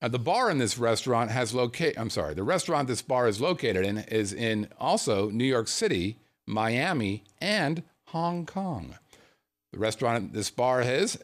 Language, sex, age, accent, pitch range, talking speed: English, male, 50-69, American, 110-185 Hz, 170 wpm